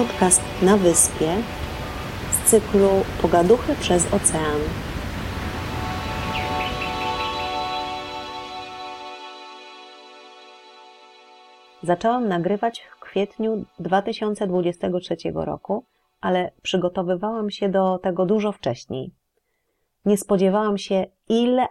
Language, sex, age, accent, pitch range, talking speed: Polish, female, 30-49, native, 160-205 Hz, 70 wpm